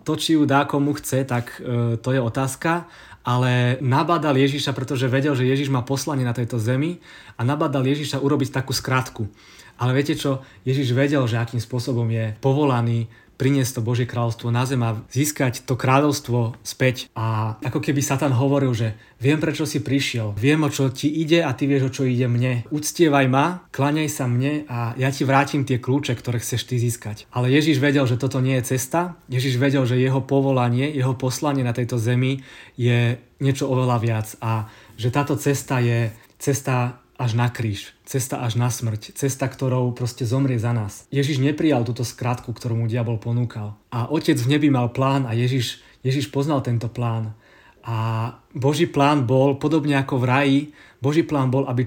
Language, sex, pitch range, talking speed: Czech, male, 120-140 Hz, 185 wpm